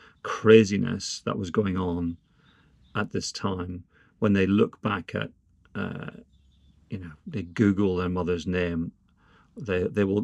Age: 40-59